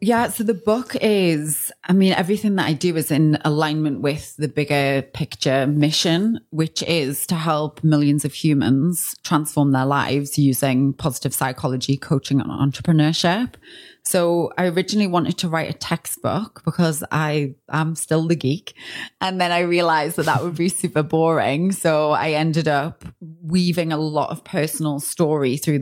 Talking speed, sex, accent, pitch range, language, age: 165 wpm, female, British, 145-180 Hz, English, 30-49